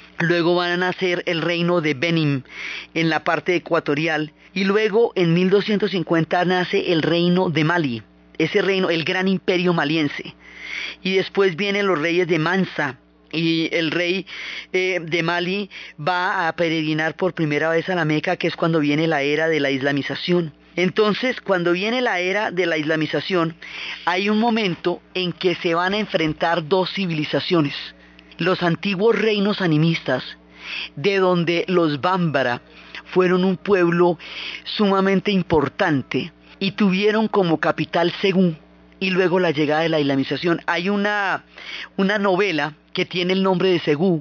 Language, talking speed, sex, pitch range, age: Spanish, 150 wpm, female, 155-190 Hz, 30-49